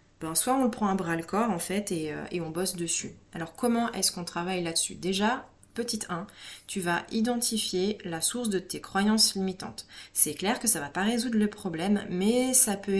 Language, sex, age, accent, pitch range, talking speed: French, female, 30-49, French, 165-200 Hz, 220 wpm